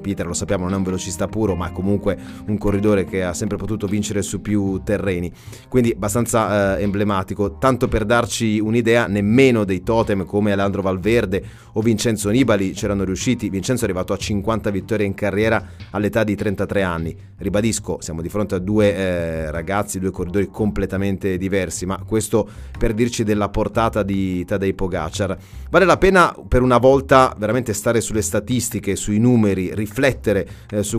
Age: 30-49